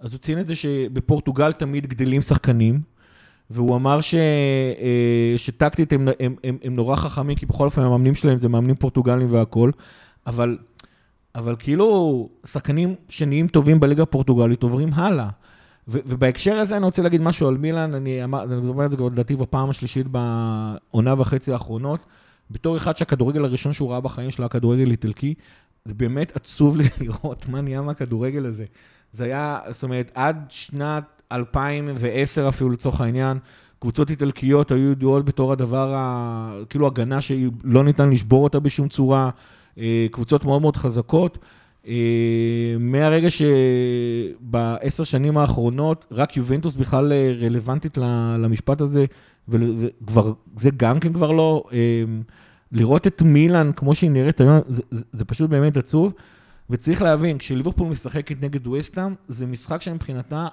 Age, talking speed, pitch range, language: 30-49, 140 wpm, 120-150 Hz, Hebrew